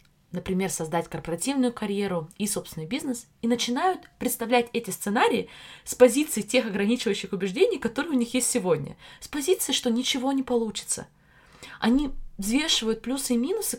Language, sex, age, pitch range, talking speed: Russian, female, 20-39, 185-245 Hz, 145 wpm